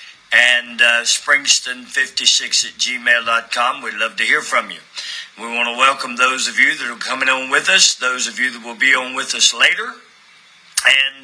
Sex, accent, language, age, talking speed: male, American, English, 50-69, 185 wpm